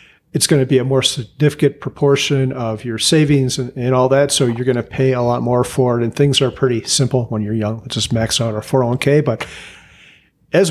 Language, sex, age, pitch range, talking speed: English, male, 40-59, 125-150 Hz, 230 wpm